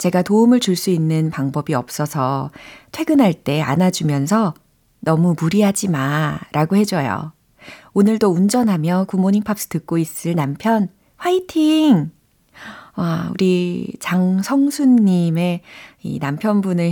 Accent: native